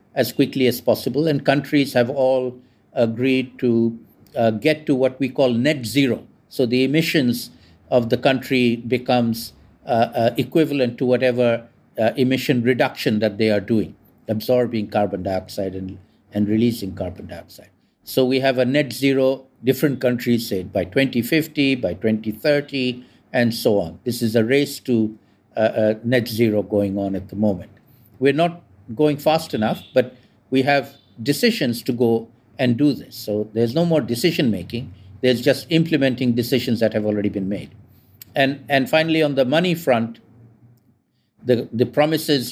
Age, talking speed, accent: 60-79, 160 wpm, Indian